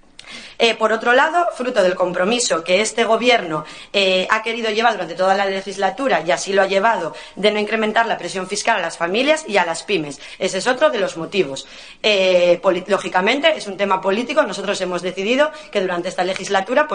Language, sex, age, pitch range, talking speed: Spanish, female, 20-39, 180-230 Hz, 195 wpm